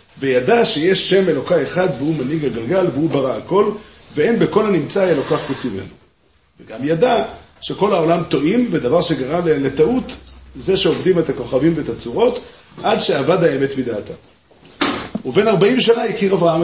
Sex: male